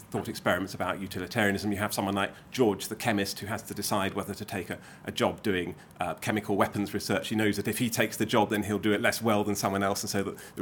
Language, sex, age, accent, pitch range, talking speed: English, male, 30-49, British, 105-140 Hz, 265 wpm